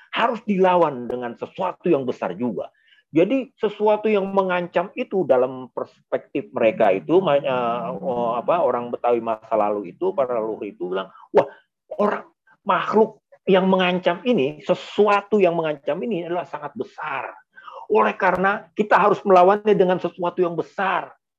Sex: male